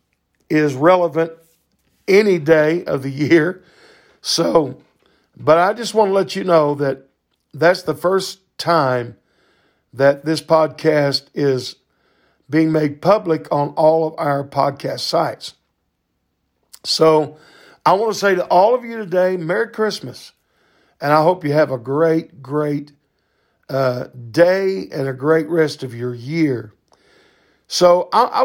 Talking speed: 135 wpm